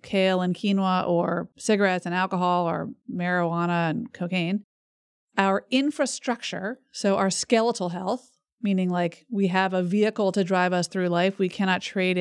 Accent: American